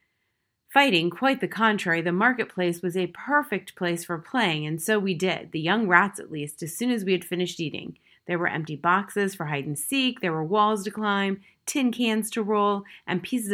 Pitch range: 170-220 Hz